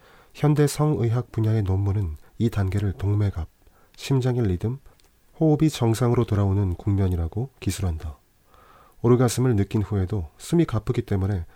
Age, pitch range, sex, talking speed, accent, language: 40-59, 95-130 Hz, male, 105 wpm, Korean, English